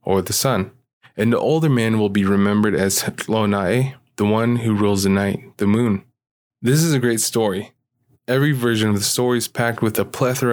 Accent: American